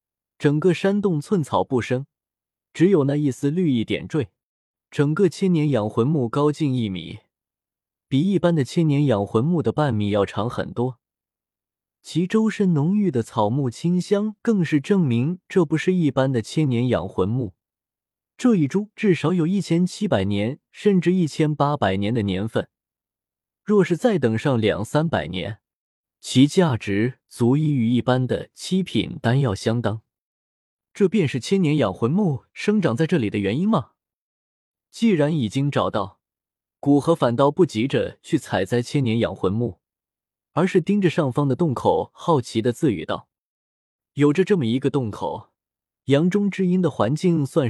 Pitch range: 120-180 Hz